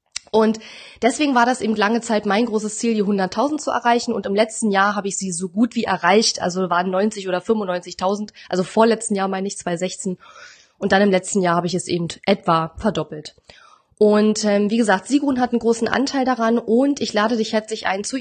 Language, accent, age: German, German, 20-39